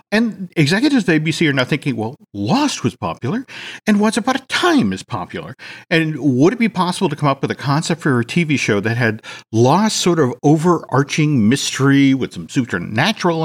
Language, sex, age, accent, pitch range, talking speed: English, male, 50-69, American, 115-175 Hz, 190 wpm